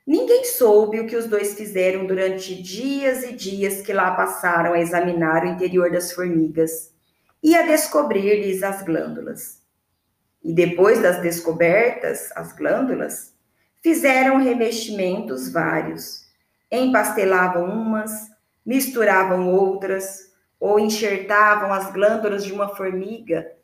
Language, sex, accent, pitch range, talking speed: Portuguese, female, Brazilian, 180-260 Hz, 115 wpm